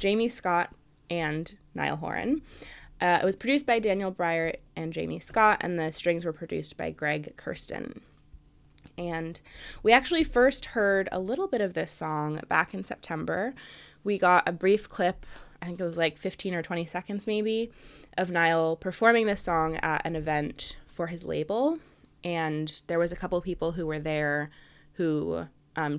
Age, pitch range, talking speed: 20-39, 160-200 Hz, 170 wpm